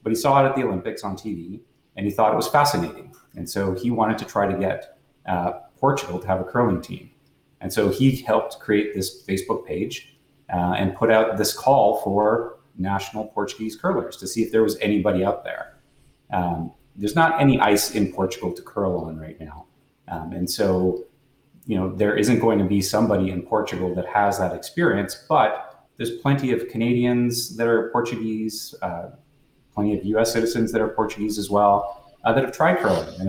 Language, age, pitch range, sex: English, 30-49, 95-115 Hz, male